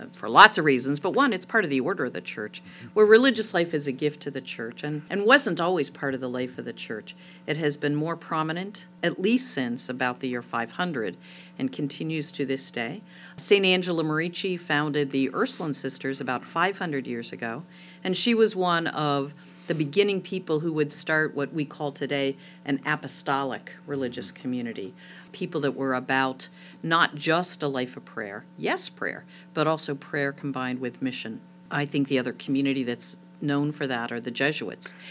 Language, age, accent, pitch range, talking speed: English, 50-69, American, 135-175 Hz, 190 wpm